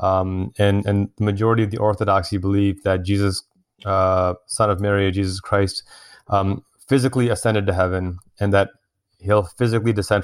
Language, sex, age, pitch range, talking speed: English, male, 20-39, 95-110 Hz, 160 wpm